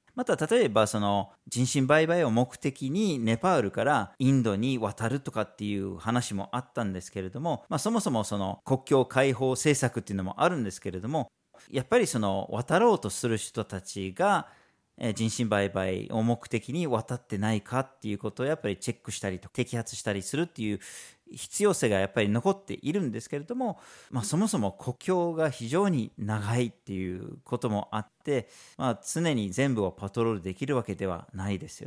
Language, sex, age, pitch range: Japanese, male, 40-59, 100-140 Hz